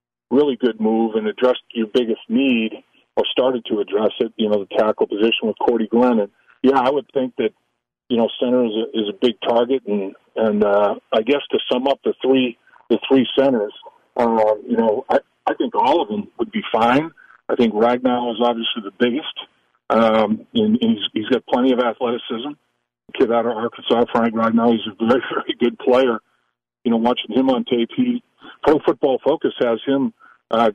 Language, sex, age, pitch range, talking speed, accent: English, male, 40-59, 115-140 Hz, 200 wpm, American